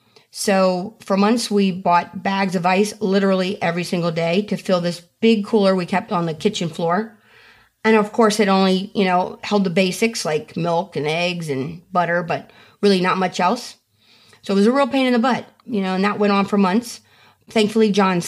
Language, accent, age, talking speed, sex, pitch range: English, American, 30-49, 205 wpm, female, 185-220 Hz